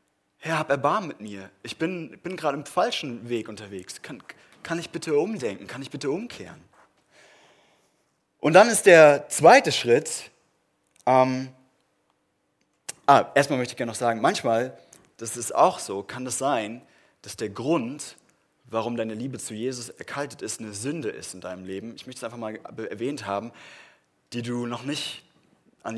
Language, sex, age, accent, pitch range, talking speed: German, male, 30-49, German, 115-145 Hz, 165 wpm